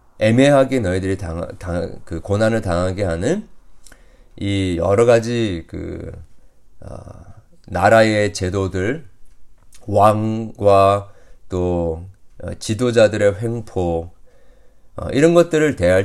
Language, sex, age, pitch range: Korean, male, 40-59, 90-120 Hz